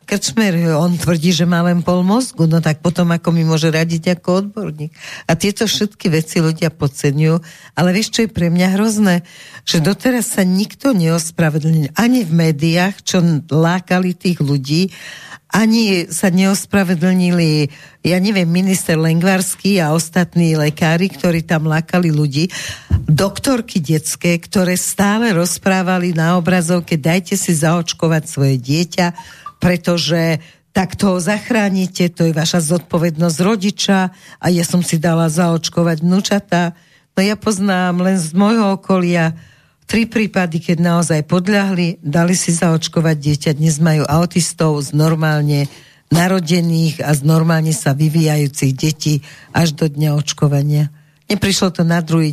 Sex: female